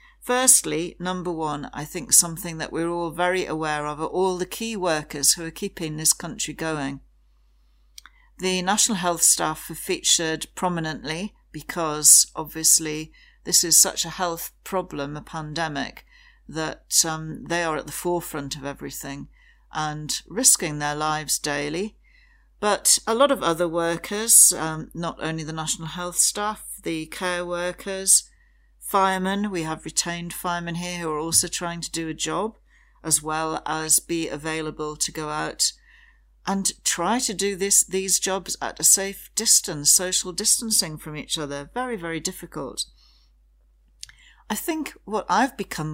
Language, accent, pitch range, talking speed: English, British, 155-190 Hz, 150 wpm